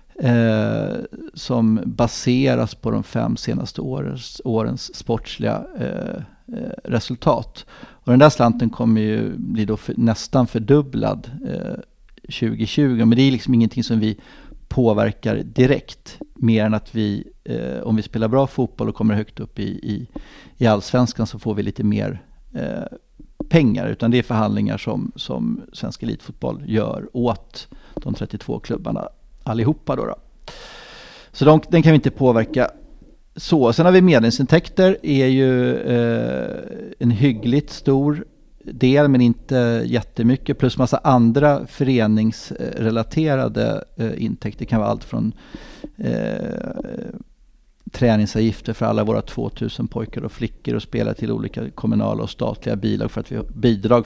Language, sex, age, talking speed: English, male, 50-69, 130 wpm